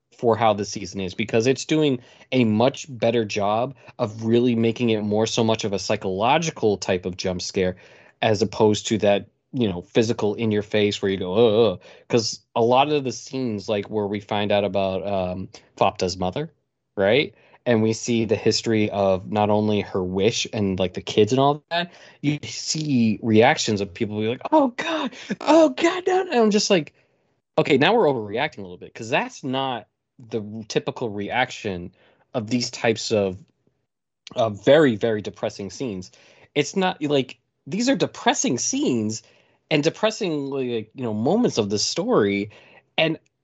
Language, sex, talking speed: English, male, 180 wpm